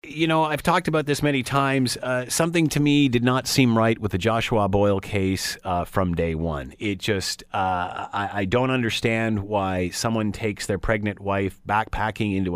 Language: English